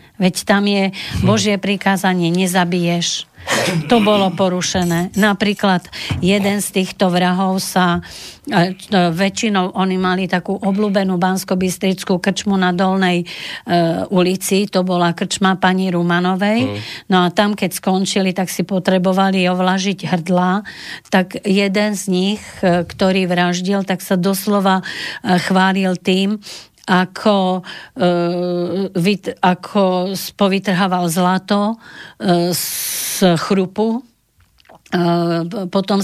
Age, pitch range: 50-69, 180-195 Hz